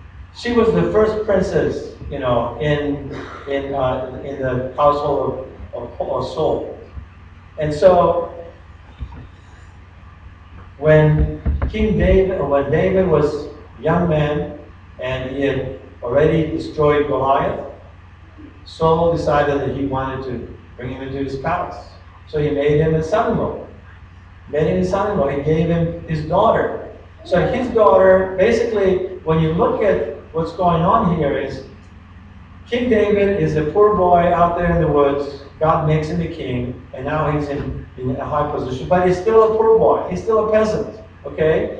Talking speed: 155 wpm